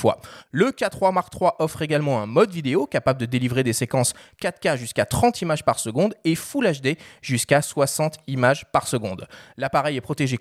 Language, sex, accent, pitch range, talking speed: French, male, French, 145-220 Hz, 180 wpm